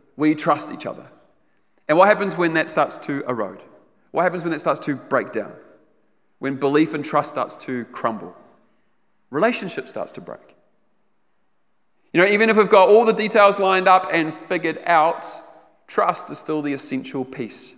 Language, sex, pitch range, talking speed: English, male, 145-190 Hz, 170 wpm